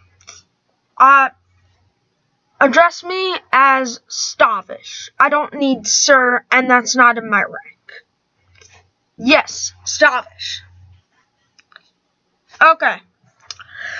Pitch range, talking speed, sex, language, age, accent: 235-310 Hz, 75 wpm, female, English, 10-29, American